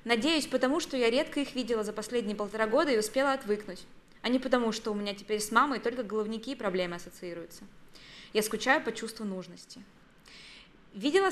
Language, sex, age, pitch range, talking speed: Russian, female, 20-39, 205-255 Hz, 180 wpm